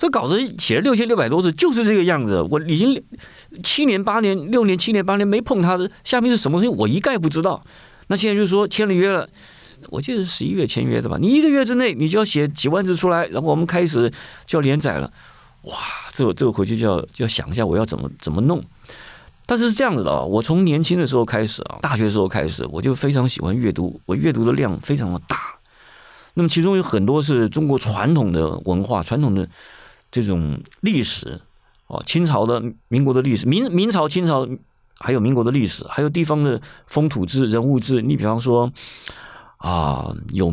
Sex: male